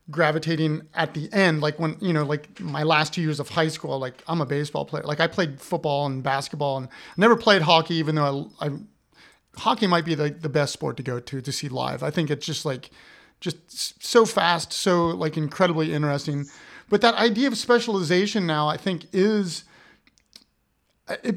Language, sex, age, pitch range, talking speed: English, male, 30-49, 155-195 Hz, 195 wpm